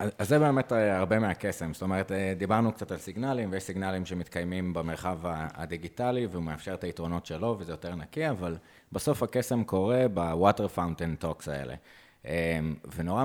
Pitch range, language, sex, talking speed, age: 85-110 Hz, Hebrew, male, 145 wpm, 30-49